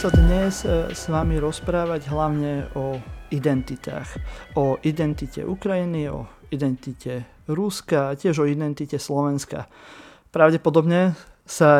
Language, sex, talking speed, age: Slovak, male, 100 wpm, 30-49